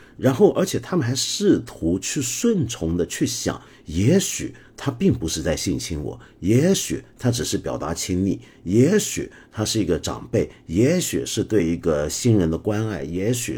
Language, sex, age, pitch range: Chinese, male, 50-69, 90-135 Hz